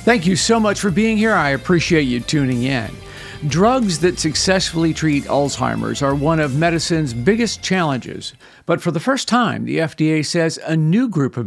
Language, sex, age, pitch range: English, male, 50-69, 140-180 Hz